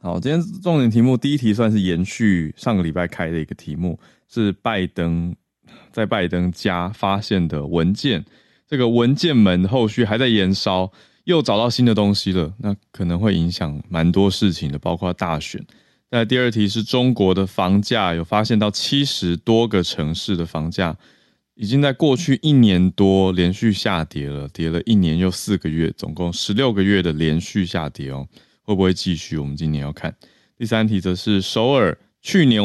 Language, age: Chinese, 20-39